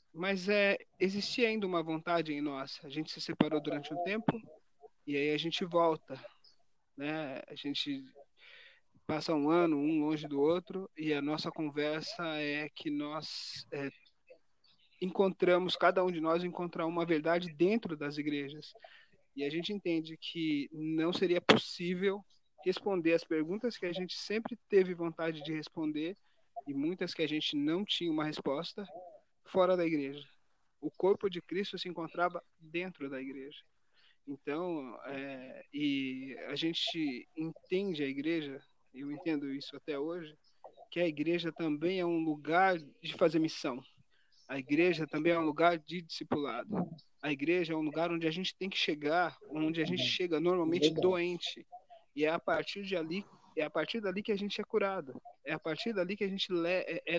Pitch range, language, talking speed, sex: 155-190 Hz, Portuguese, 170 wpm, male